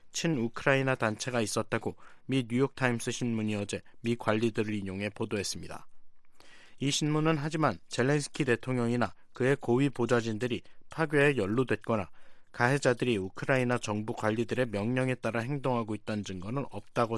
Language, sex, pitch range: Korean, male, 110-135 Hz